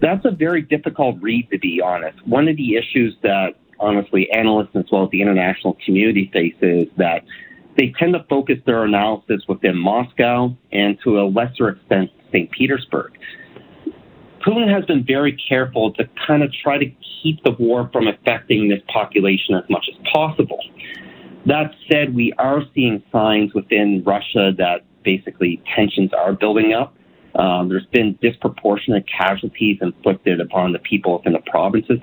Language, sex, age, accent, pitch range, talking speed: English, male, 40-59, American, 95-130 Hz, 160 wpm